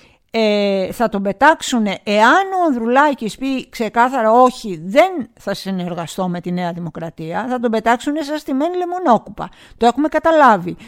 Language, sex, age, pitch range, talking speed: Greek, female, 50-69, 195-290 Hz, 140 wpm